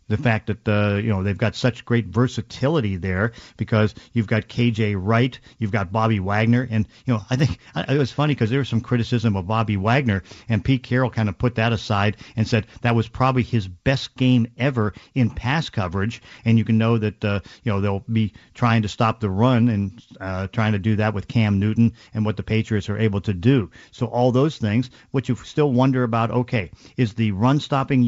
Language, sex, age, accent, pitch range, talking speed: English, male, 50-69, American, 105-125 Hz, 220 wpm